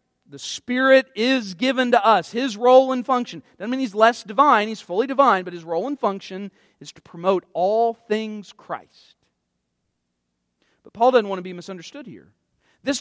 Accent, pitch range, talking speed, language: American, 155-245 Hz, 175 wpm, English